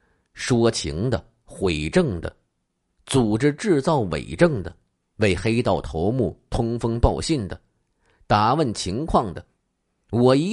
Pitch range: 90-140 Hz